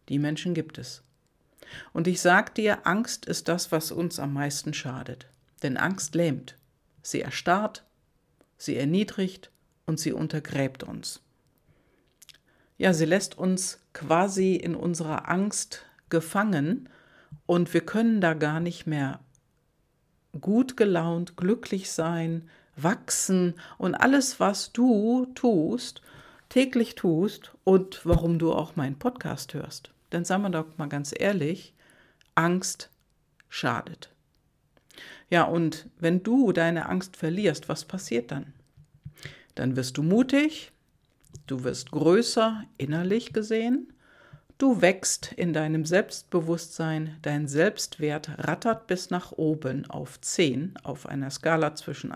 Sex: female